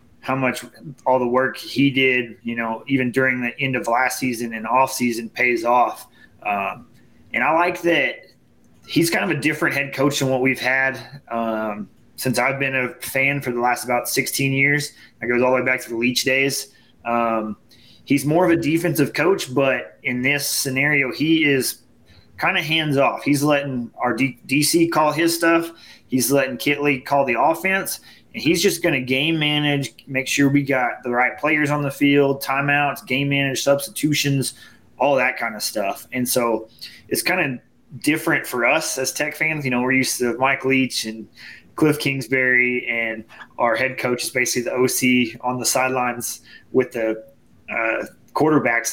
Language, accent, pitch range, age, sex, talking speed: English, American, 120-145 Hz, 20-39, male, 185 wpm